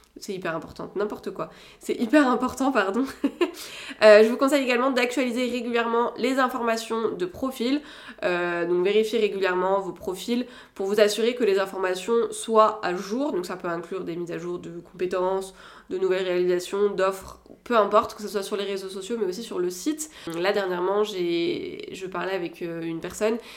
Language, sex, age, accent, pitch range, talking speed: French, female, 20-39, French, 195-250 Hz, 180 wpm